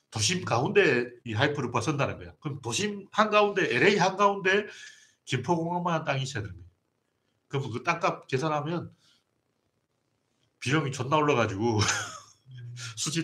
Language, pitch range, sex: Korean, 120-160 Hz, male